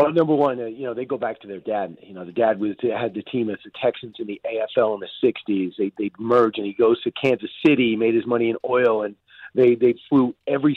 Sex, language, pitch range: male, English, 115-130 Hz